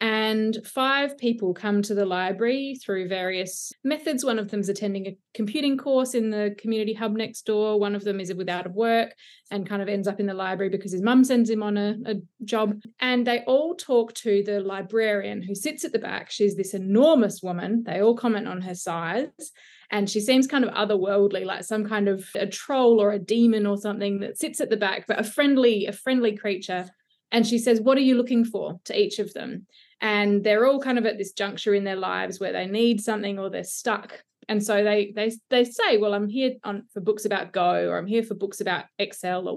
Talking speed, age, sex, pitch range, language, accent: 225 wpm, 20-39, female, 200-235 Hz, English, Australian